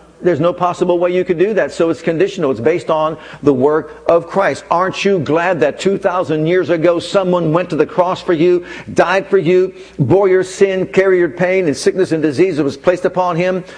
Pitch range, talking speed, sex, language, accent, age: 165-205 Hz, 220 wpm, male, English, American, 50-69